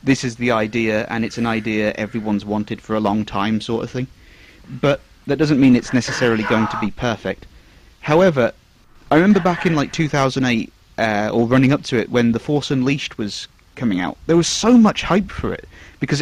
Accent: British